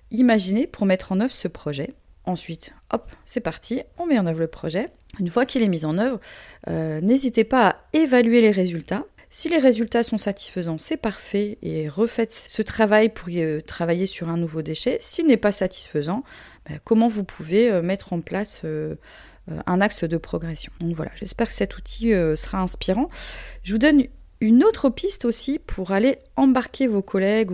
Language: French